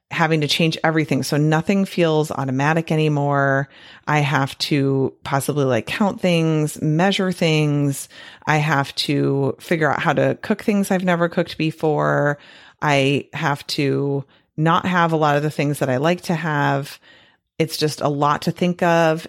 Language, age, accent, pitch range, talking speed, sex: English, 30-49, American, 140-175 Hz, 165 wpm, female